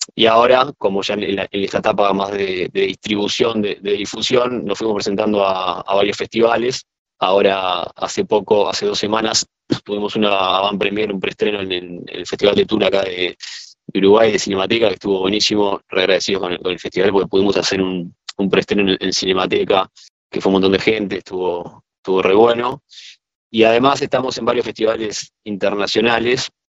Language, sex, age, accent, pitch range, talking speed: Spanish, male, 20-39, Argentinian, 95-110 Hz, 180 wpm